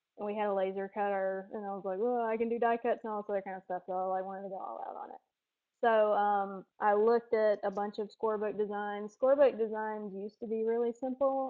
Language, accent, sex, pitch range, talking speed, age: English, American, female, 200-225 Hz, 260 wpm, 20-39